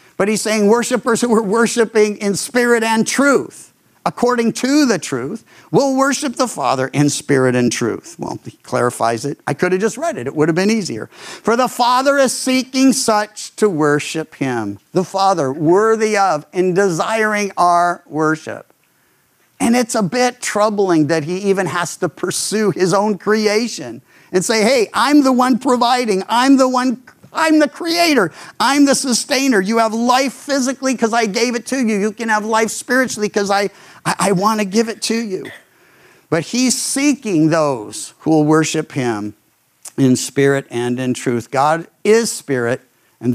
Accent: American